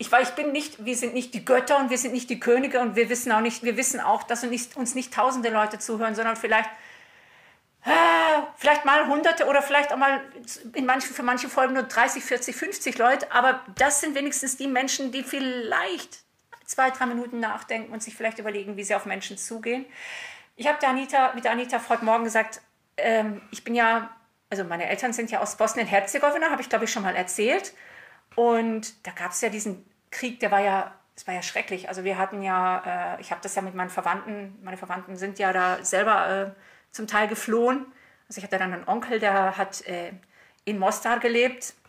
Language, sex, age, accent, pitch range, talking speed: German, female, 40-59, German, 195-250 Hz, 210 wpm